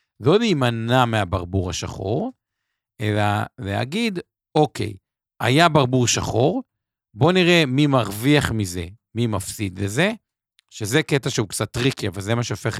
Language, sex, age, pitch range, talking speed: Hebrew, male, 50-69, 105-145 Hz, 125 wpm